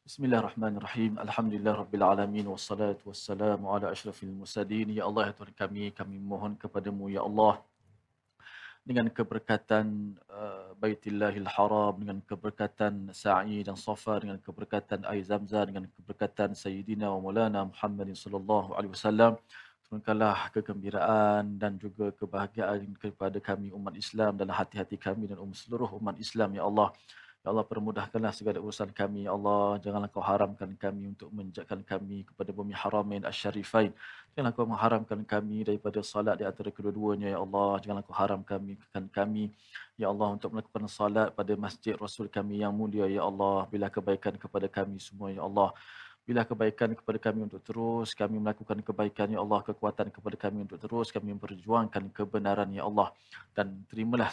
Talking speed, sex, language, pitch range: 155 wpm, male, Malayalam, 100-105 Hz